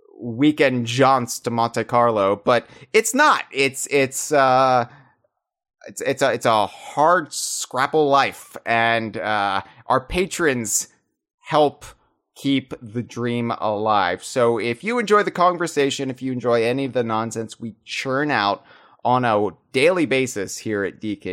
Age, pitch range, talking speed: 30-49, 115-150 Hz, 145 wpm